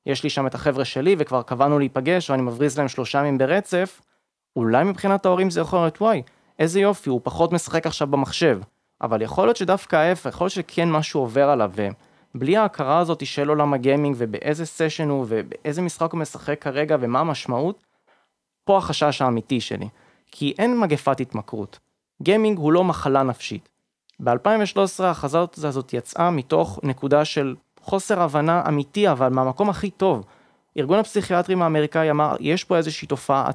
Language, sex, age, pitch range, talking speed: Hebrew, male, 20-39, 135-180 Hz, 165 wpm